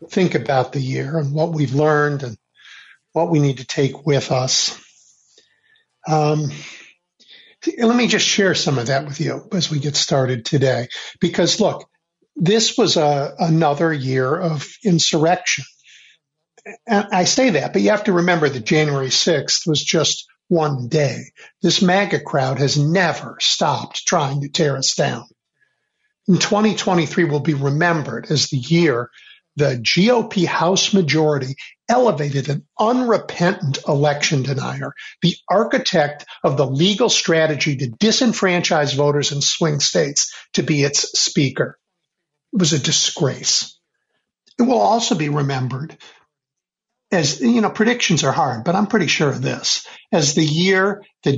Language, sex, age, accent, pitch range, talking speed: English, male, 50-69, American, 145-190 Hz, 145 wpm